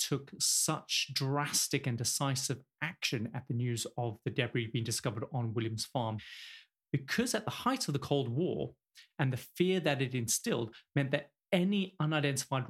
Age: 30-49